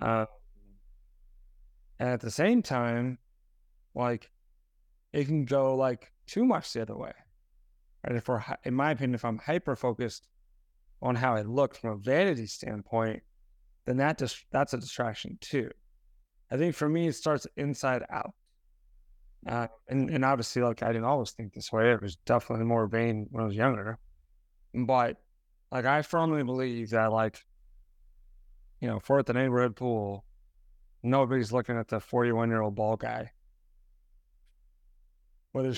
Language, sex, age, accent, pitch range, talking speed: English, male, 20-39, American, 105-135 Hz, 160 wpm